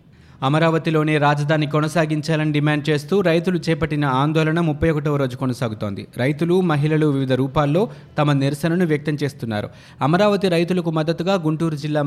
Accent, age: native, 20-39